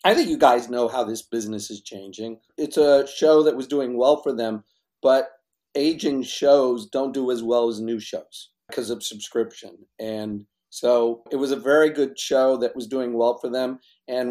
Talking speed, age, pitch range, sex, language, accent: 195 wpm, 50-69, 120-155 Hz, male, English, American